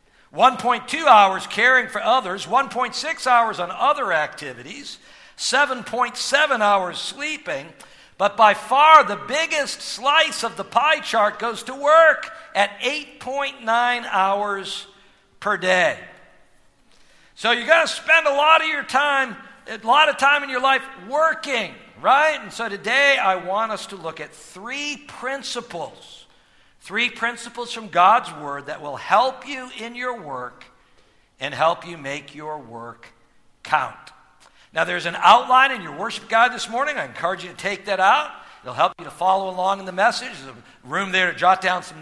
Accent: American